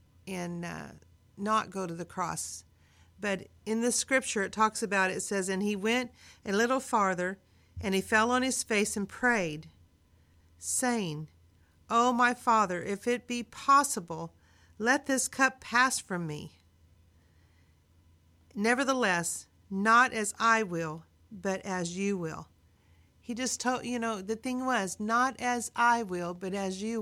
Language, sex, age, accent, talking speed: English, female, 50-69, American, 150 wpm